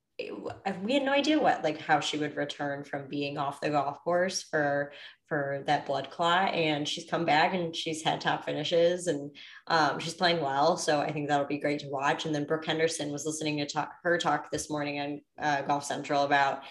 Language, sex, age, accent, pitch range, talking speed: English, female, 20-39, American, 145-170 Hz, 215 wpm